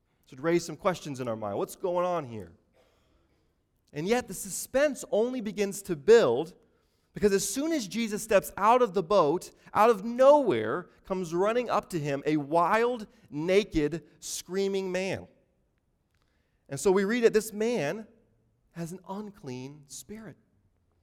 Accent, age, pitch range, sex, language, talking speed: American, 30-49, 145-210 Hz, male, English, 150 wpm